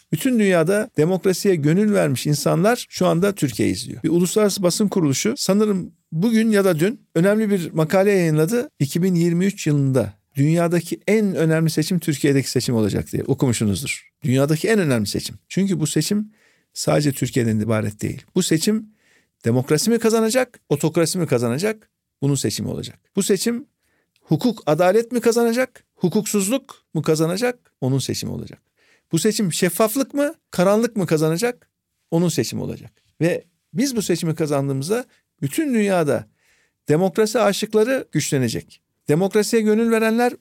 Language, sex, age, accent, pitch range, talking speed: Turkish, male, 50-69, native, 145-210 Hz, 135 wpm